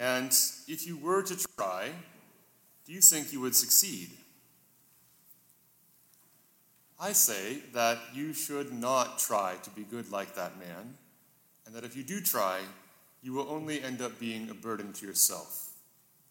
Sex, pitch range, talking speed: male, 115-145 Hz, 150 wpm